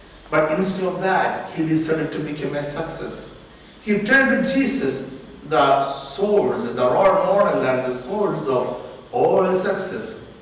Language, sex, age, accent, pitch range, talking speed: Malayalam, male, 60-79, native, 140-210 Hz, 150 wpm